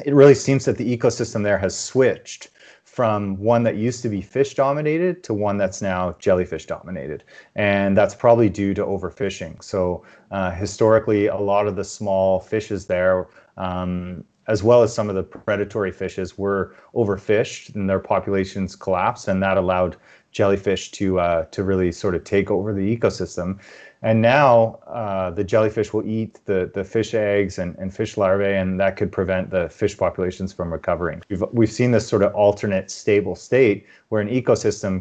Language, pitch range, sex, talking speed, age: English, 95-110 Hz, male, 180 wpm, 30-49